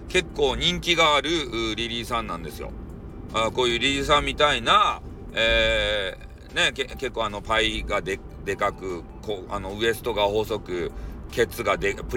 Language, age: Japanese, 40-59